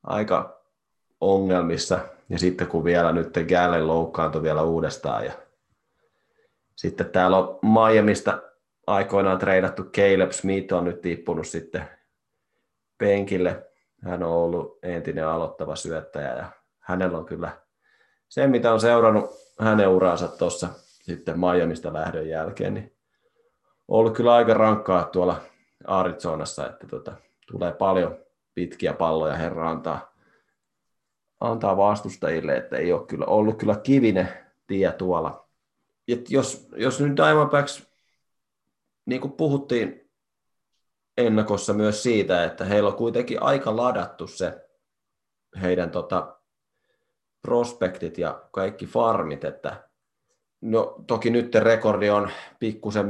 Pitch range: 90-110 Hz